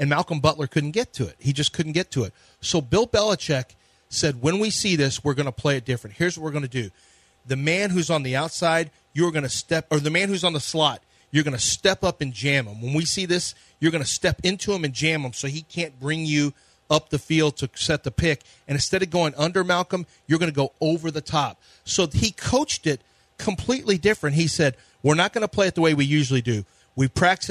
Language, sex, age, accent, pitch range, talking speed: English, male, 40-59, American, 140-175 Hz, 255 wpm